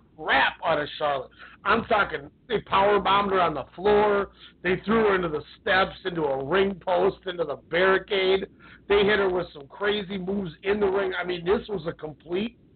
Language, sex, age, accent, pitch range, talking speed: English, male, 50-69, American, 155-195 Hz, 200 wpm